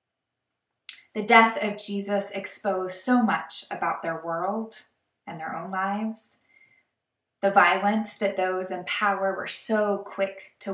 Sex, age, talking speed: female, 20-39, 135 wpm